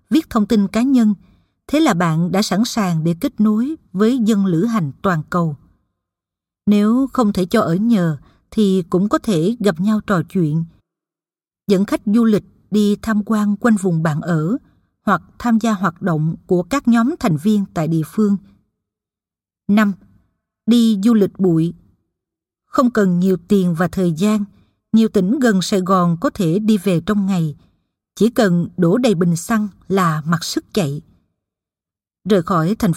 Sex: female